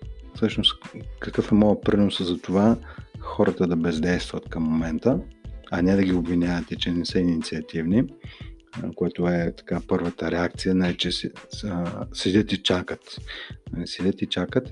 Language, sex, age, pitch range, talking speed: Bulgarian, male, 30-49, 85-105 Hz, 140 wpm